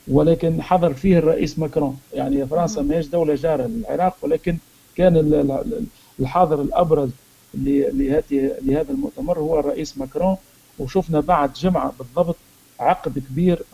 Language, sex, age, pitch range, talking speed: Arabic, male, 50-69, 140-170 Hz, 115 wpm